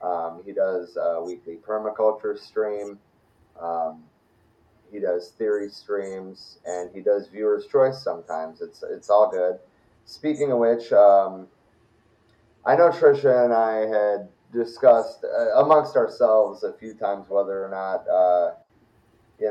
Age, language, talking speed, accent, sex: 30-49, English, 135 wpm, American, male